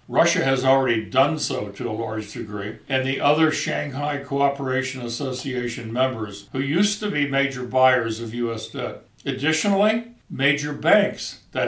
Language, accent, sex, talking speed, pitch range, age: English, American, male, 150 wpm, 125-155 Hz, 60-79